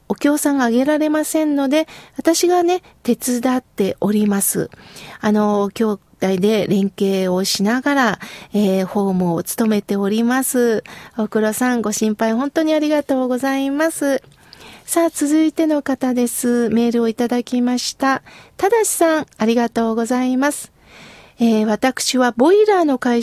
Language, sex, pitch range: Japanese, female, 230-300 Hz